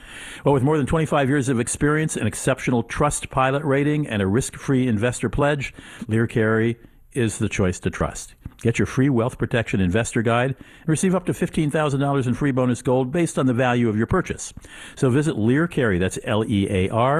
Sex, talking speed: male, 185 wpm